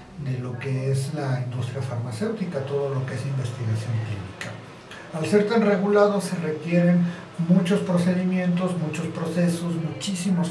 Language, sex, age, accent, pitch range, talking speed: Spanish, male, 50-69, Mexican, 140-180 Hz, 135 wpm